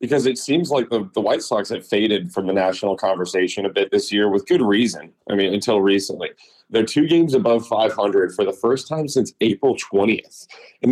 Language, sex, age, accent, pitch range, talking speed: English, male, 30-49, American, 100-135 Hz, 210 wpm